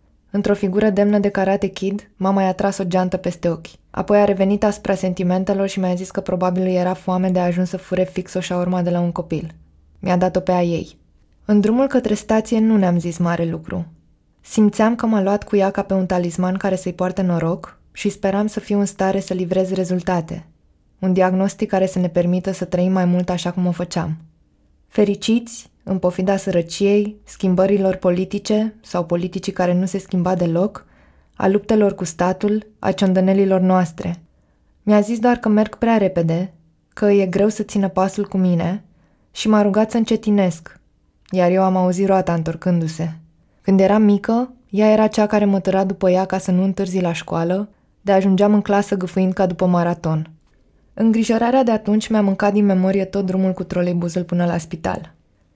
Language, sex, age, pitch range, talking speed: Romanian, female, 20-39, 180-205 Hz, 185 wpm